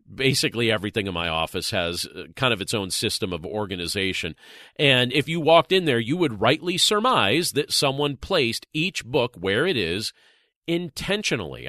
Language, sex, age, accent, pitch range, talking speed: English, male, 40-59, American, 110-155 Hz, 165 wpm